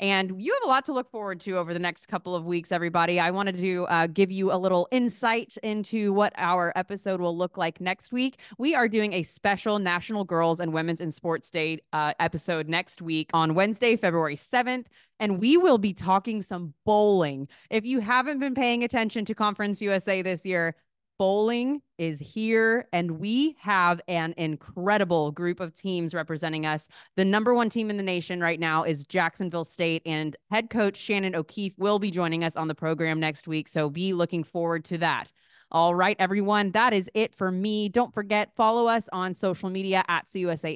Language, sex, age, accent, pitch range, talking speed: English, female, 20-39, American, 170-220 Hz, 195 wpm